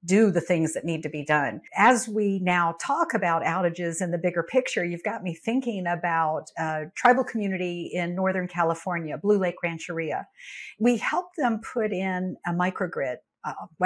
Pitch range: 175-220 Hz